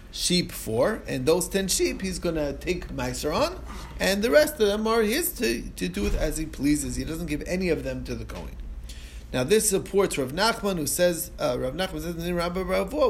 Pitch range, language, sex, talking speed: 125-185 Hz, English, male, 215 wpm